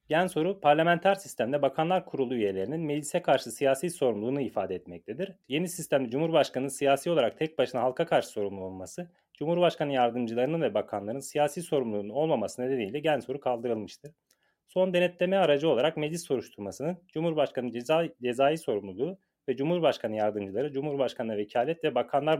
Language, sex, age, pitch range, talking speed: Turkish, male, 30-49, 130-165 Hz, 135 wpm